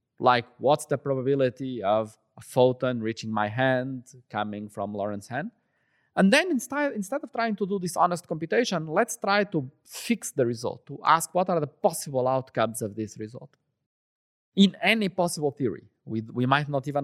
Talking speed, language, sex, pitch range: 175 wpm, English, male, 125-195 Hz